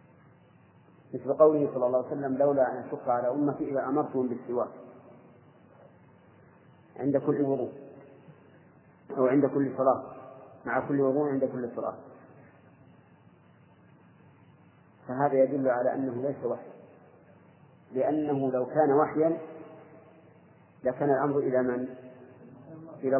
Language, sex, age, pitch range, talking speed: Arabic, male, 40-59, 130-150 Hz, 105 wpm